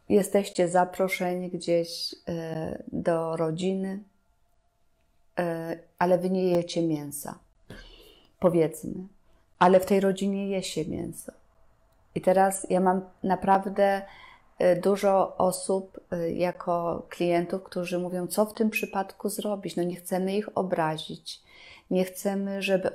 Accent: native